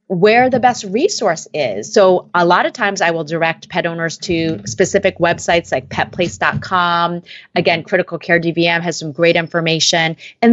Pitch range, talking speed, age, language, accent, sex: 165-205 Hz, 165 wpm, 30-49, English, American, female